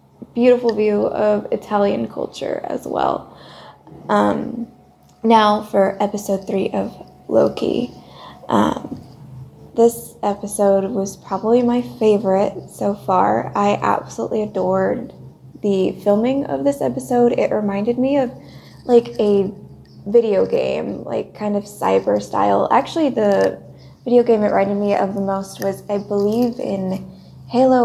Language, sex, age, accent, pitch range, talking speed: English, female, 20-39, American, 190-225 Hz, 125 wpm